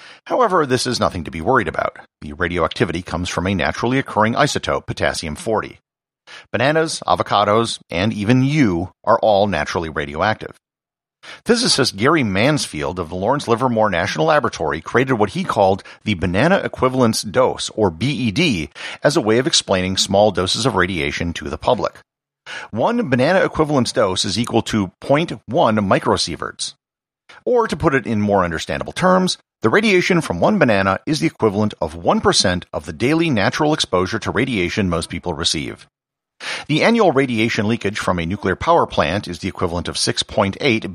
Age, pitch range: 50-69, 90-130 Hz